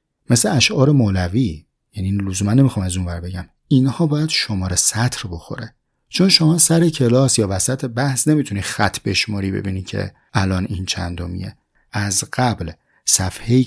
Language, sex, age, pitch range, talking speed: Persian, male, 30-49, 95-125 Hz, 145 wpm